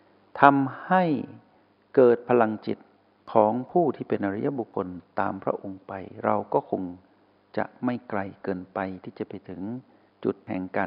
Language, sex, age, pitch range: Thai, male, 60-79, 95-115 Hz